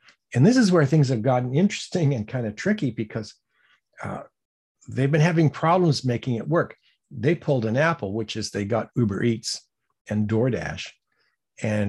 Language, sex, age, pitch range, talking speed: English, male, 50-69, 110-145 Hz, 170 wpm